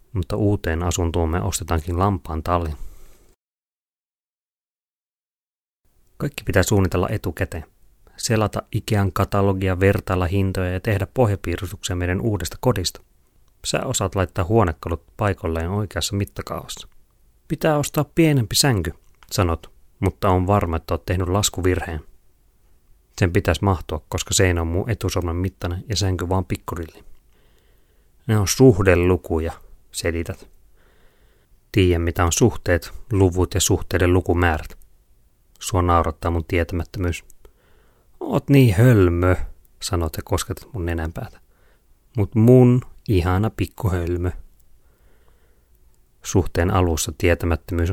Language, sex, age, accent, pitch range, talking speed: Finnish, male, 30-49, native, 85-100 Hz, 110 wpm